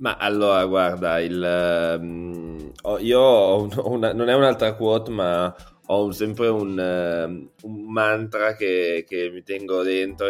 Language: Italian